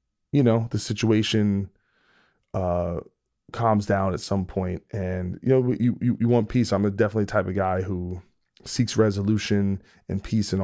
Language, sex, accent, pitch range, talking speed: English, male, American, 95-115 Hz, 170 wpm